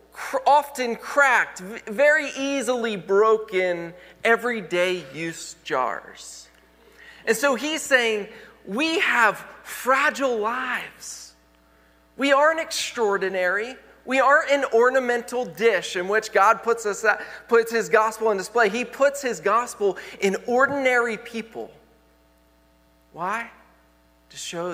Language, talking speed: English, 100 wpm